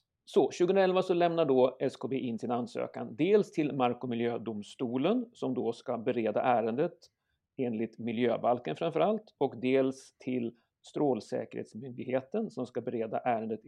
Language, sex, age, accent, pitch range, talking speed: Swedish, male, 40-59, native, 120-175 Hz, 135 wpm